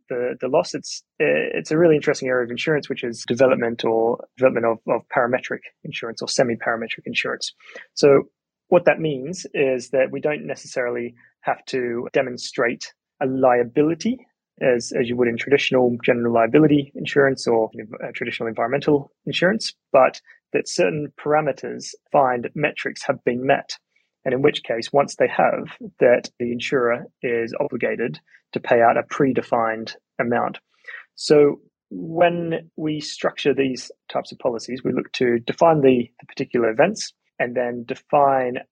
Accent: British